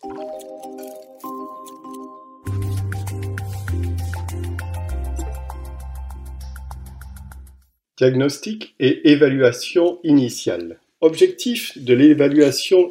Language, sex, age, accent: French, male, 50-69, French